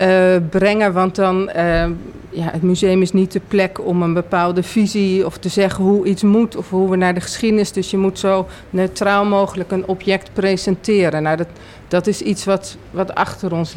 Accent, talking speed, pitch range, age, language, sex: Dutch, 200 wpm, 170-195 Hz, 40-59, Dutch, female